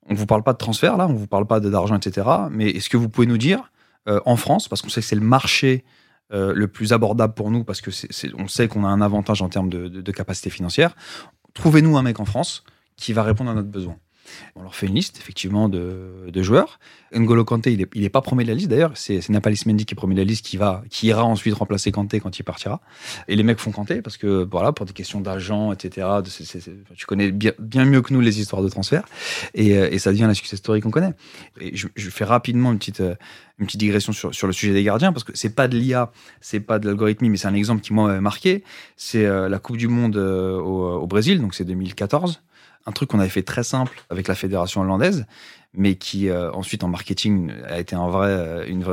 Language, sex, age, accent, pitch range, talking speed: French, male, 30-49, French, 95-120 Hz, 255 wpm